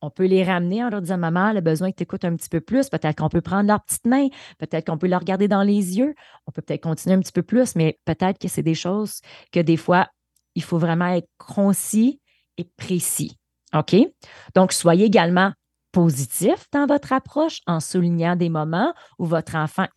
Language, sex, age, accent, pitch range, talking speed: English, female, 30-49, Canadian, 170-220 Hz, 220 wpm